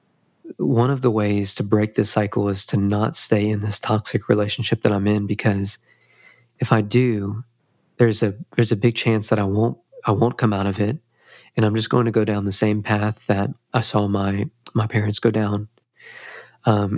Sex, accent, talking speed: male, American, 200 wpm